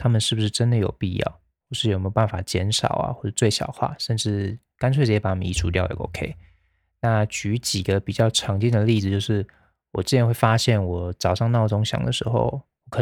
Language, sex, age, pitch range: Chinese, male, 20-39, 100-115 Hz